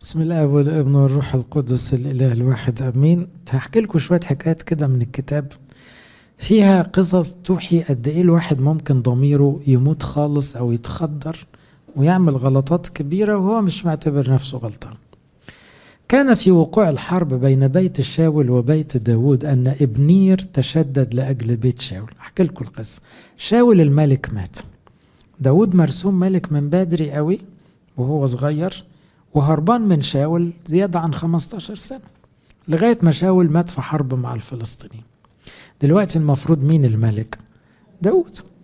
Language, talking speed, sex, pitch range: English, 130 wpm, male, 135-180 Hz